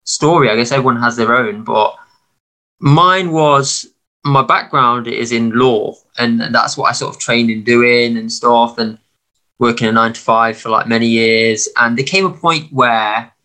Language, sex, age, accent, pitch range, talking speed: English, male, 20-39, British, 115-145 Hz, 180 wpm